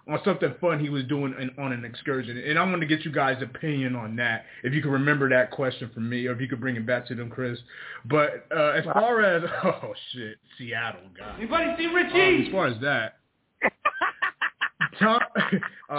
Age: 30-49